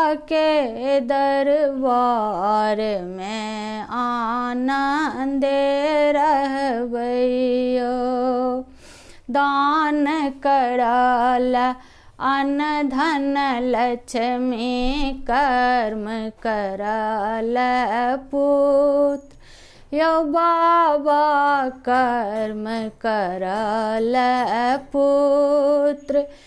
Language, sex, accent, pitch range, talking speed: Hindi, female, native, 245-305 Hz, 40 wpm